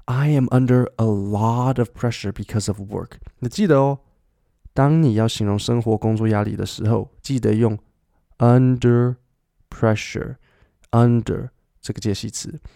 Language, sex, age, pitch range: Chinese, male, 20-39, 105-135 Hz